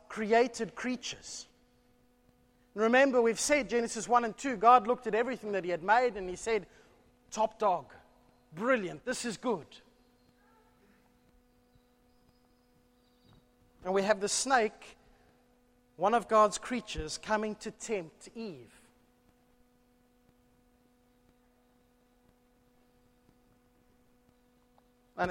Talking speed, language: 95 wpm, English